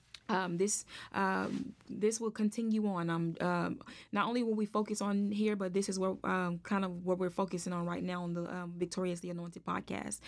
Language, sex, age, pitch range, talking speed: English, female, 20-39, 180-205 Hz, 215 wpm